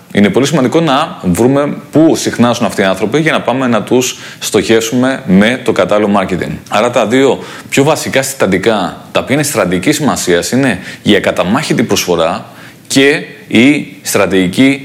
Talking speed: 155 wpm